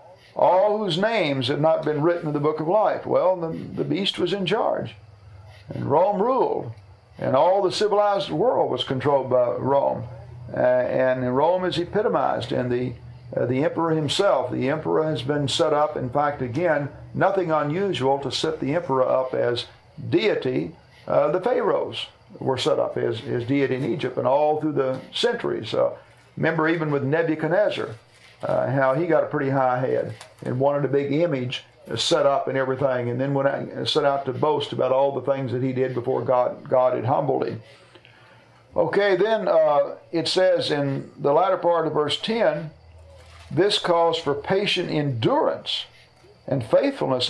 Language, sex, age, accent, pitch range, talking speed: English, male, 50-69, American, 130-175 Hz, 175 wpm